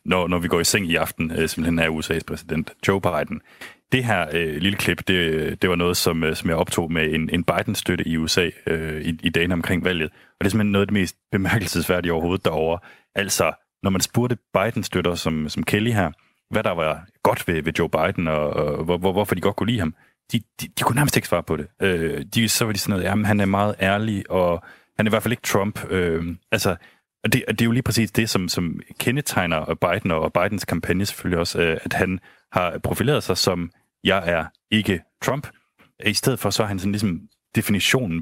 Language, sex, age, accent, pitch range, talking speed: Danish, male, 30-49, native, 85-100 Hz, 225 wpm